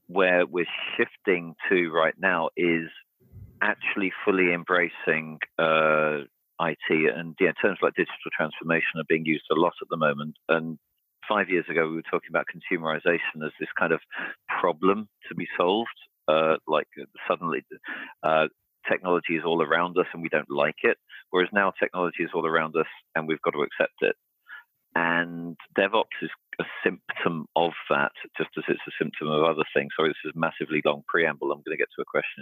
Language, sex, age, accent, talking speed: English, male, 40-59, British, 180 wpm